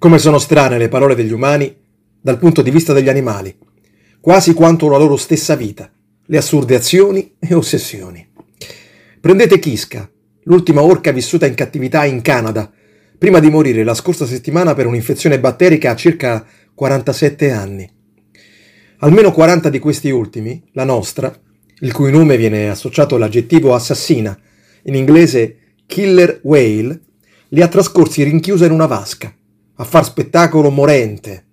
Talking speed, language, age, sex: 145 wpm, Italian, 40-59, male